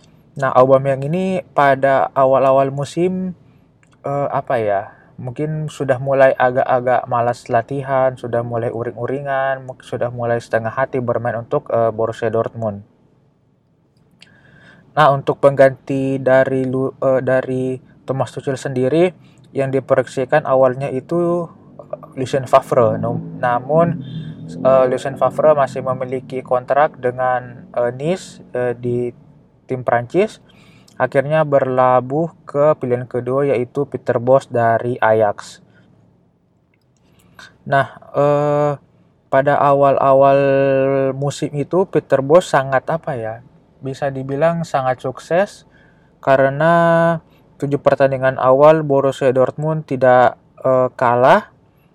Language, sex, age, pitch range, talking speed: Indonesian, male, 20-39, 130-145 Hz, 105 wpm